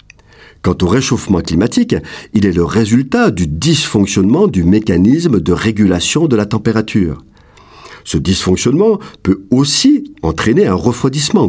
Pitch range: 90-135 Hz